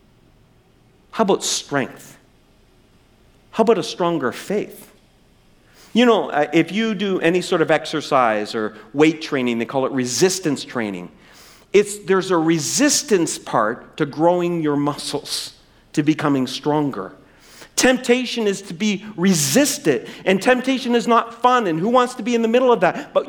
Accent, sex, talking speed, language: American, male, 145 wpm, English